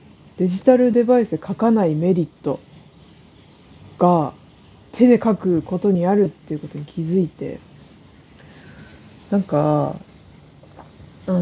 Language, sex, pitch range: Japanese, female, 160-240 Hz